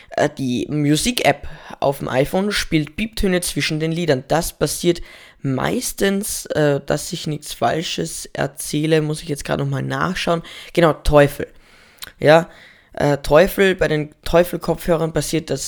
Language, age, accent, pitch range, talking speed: German, 10-29, German, 140-170 Hz, 140 wpm